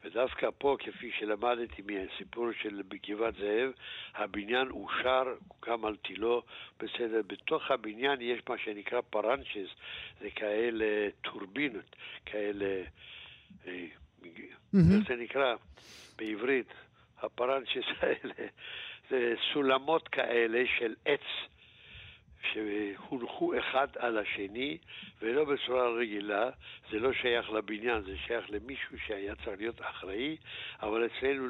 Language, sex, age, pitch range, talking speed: Hebrew, male, 60-79, 105-130 Hz, 105 wpm